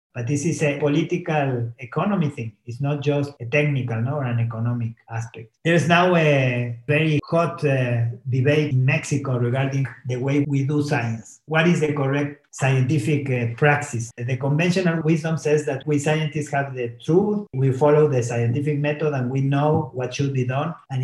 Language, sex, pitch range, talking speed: English, male, 125-150 Hz, 180 wpm